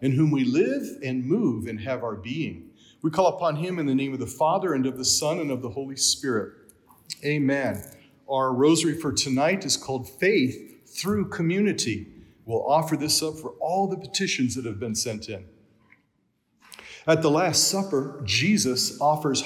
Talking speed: 180 wpm